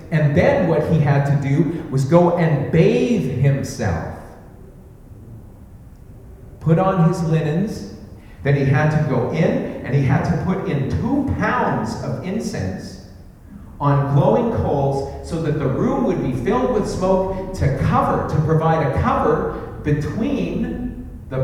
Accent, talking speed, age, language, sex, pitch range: American, 145 wpm, 40-59, English, male, 95-155 Hz